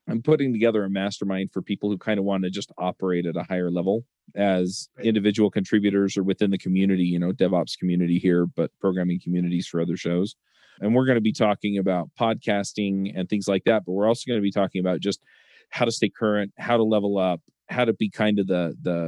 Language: English